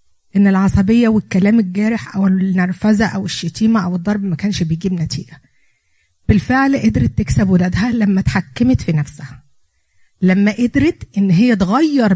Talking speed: 135 wpm